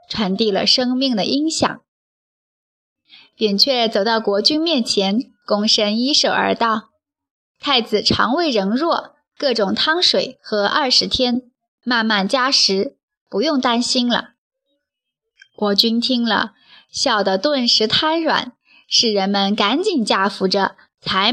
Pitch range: 205-290 Hz